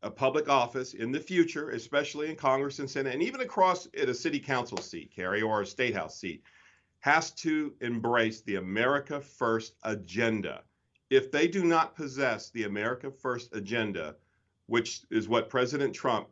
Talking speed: 170 wpm